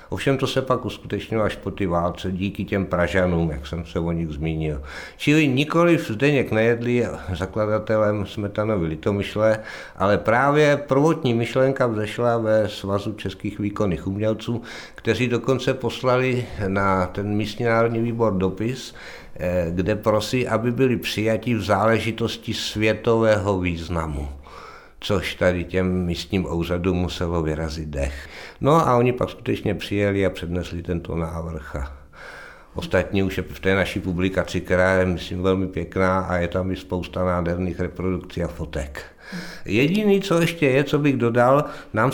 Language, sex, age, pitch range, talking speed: Czech, male, 60-79, 85-115 Hz, 145 wpm